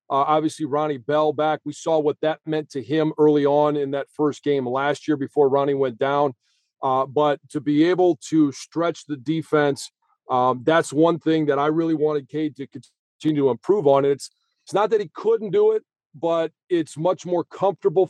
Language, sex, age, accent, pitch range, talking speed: English, male, 40-59, American, 145-165 Hz, 200 wpm